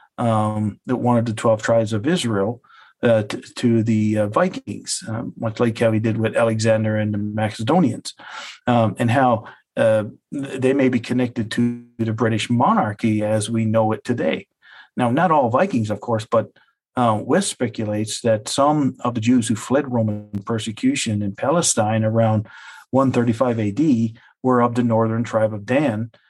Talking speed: 165 wpm